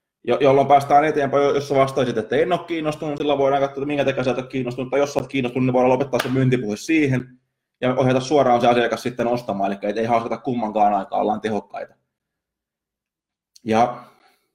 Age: 20-39